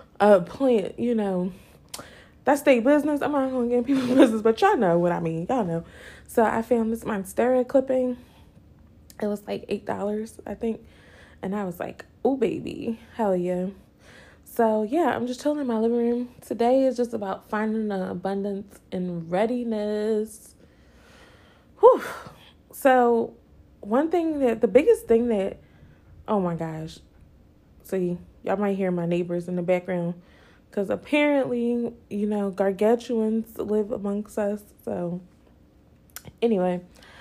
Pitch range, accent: 190-240 Hz, American